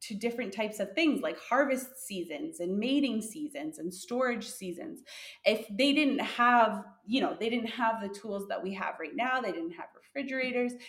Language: English